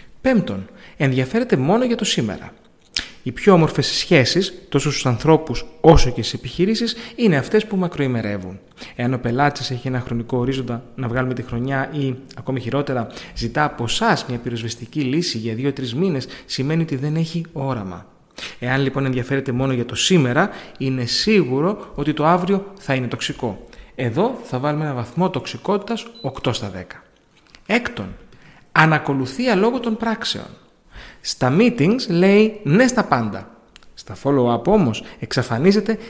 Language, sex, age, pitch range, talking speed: Greek, male, 30-49, 125-185 Hz, 145 wpm